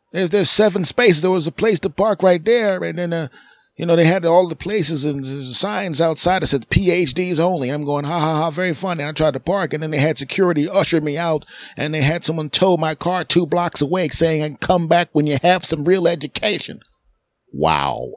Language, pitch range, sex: English, 155-185 Hz, male